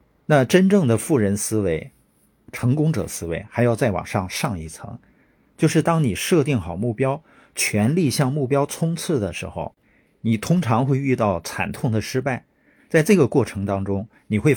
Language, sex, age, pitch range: Chinese, male, 50-69, 100-150 Hz